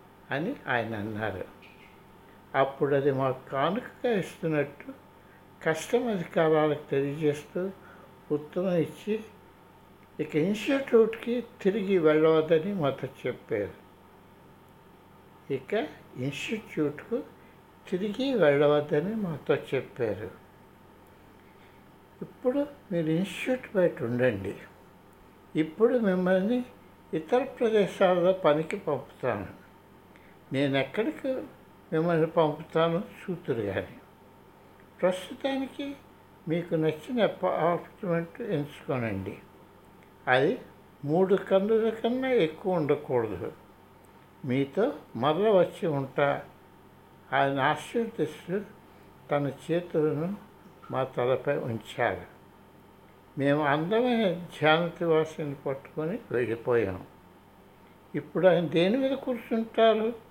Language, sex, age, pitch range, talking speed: Telugu, male, 60-79, 145-210 Hz, 75 wpm